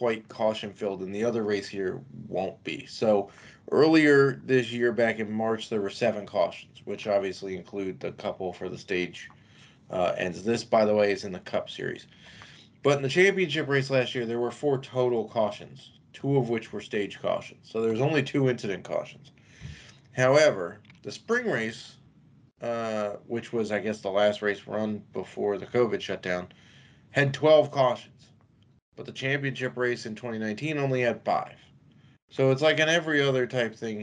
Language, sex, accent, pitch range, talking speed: English, male, American, 105-135 Hz, 180 wpm